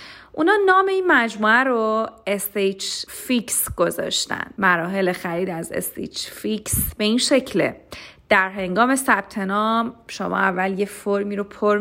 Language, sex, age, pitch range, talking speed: Persian, female, 30-49, 195-245 Hz, 120 wpm